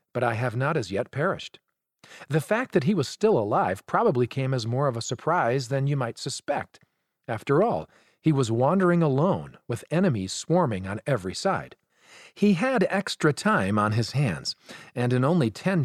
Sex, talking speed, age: male, 180 wpm, 40-59